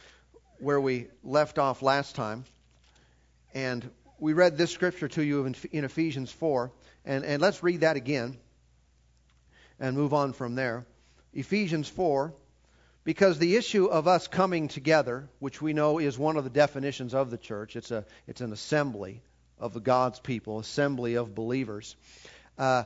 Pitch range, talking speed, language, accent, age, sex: 120-155 Hz, 160 wpm, English, American, 50-69, male